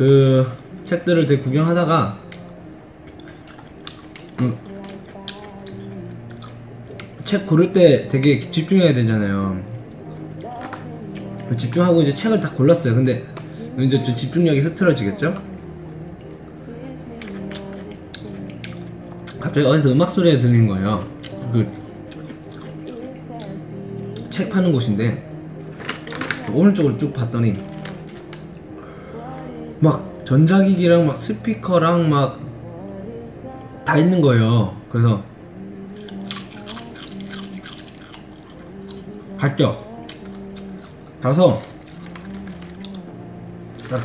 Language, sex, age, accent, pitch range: Korean, male, 20-39, native, 115-175 Hz